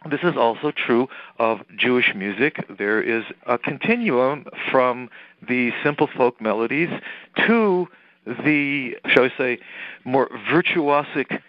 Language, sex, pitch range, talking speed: English, male, 115-155 Hz, 120 wpm